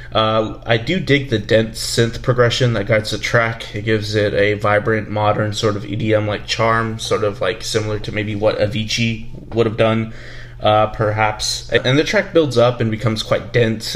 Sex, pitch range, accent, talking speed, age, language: male, 110-120 Hz, American, 195 wpm, 20-39, English